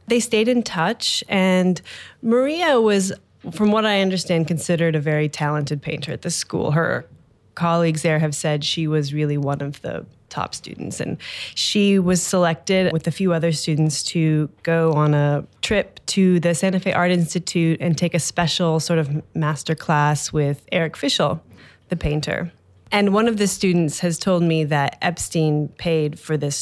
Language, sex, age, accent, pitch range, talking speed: English, female, 20-39, American, 150-180 Hz, 175 wpm